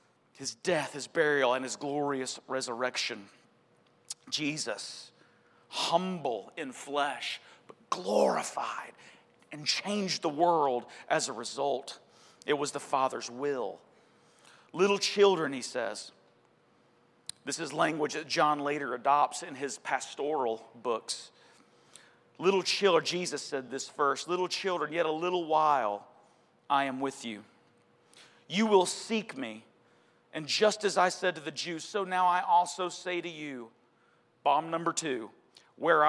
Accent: American